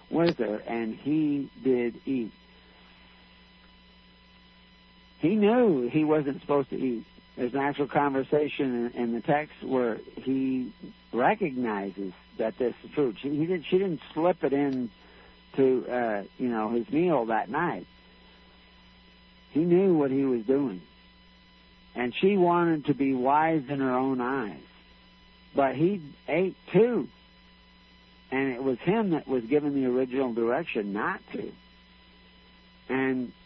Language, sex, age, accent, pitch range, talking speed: English, male, 60-79, American, 90-140 Hz, 135 wpm